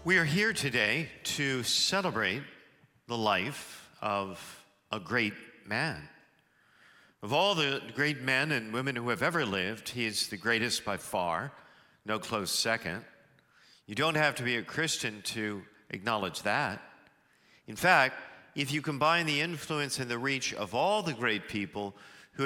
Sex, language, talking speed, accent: male, English, 155 wpm, American